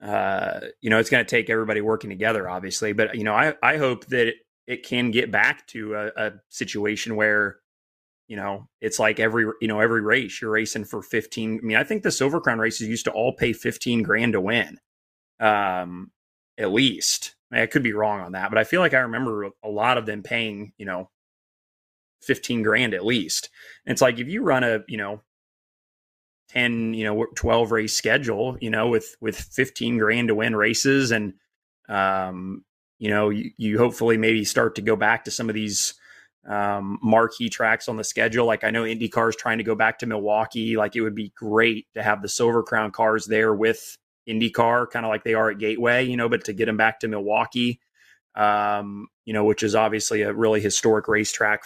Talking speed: 210 wpm